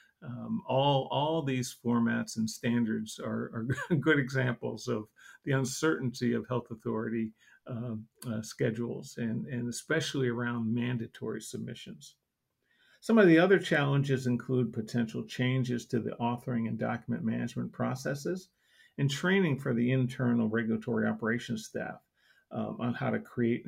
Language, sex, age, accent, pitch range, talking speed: English, male, 50-69, American, 115-135 Hz, 135 wpm